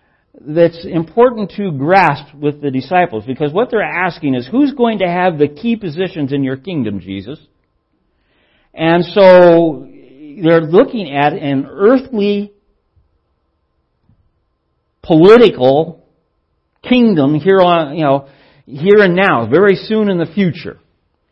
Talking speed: 125 wpm